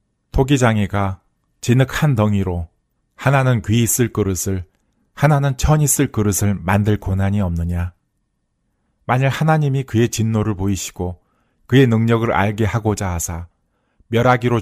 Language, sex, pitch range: Korean, male, 95-125 Hz